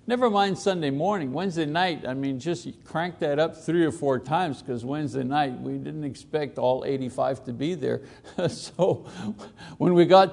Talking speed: 180 wpm